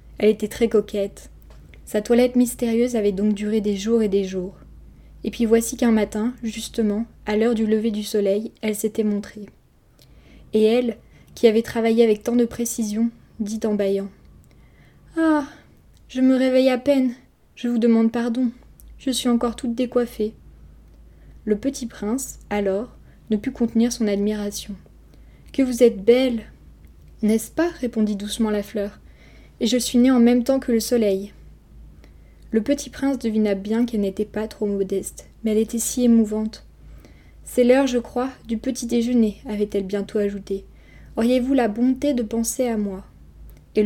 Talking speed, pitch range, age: 160 wpm, 205-240 Hz, 20-39